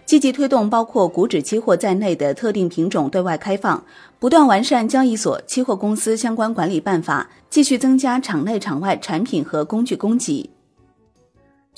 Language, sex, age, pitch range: Chinese, female, 30-49, 175-250 Hz